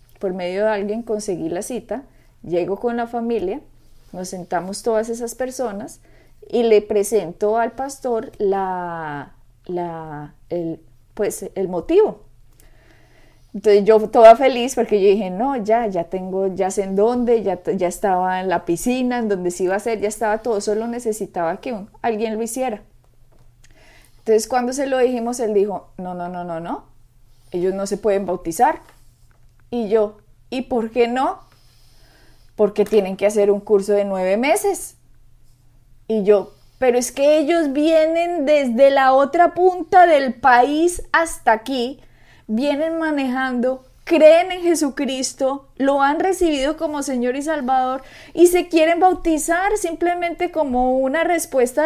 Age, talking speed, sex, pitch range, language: 20-39, 150 wpm, female, 190-275 Hz, Spanish